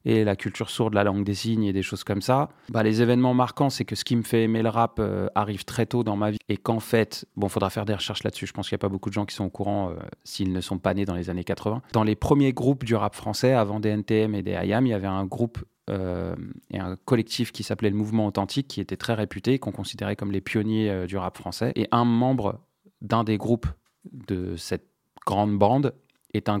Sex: male